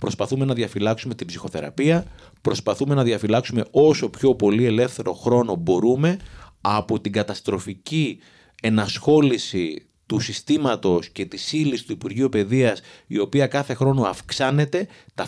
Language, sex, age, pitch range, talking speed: Greek, male, 30-49, 105-140 Hz, 125 wpm